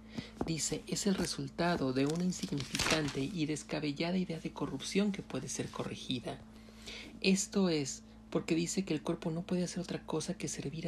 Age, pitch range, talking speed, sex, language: 40-59, 145-185 Hz, 165 wpm, male, Spanish